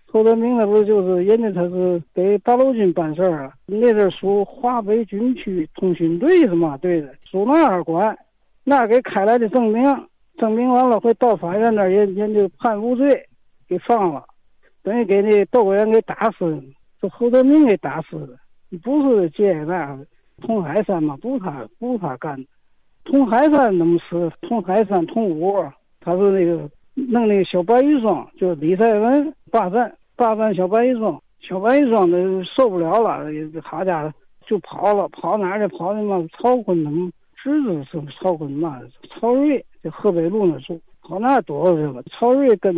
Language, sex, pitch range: Chinese, male, 180-240 Hz